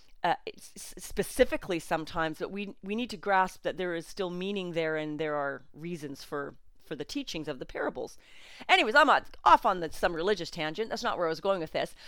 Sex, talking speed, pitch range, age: female, 215 wpm, 155-220 Hz, 40-59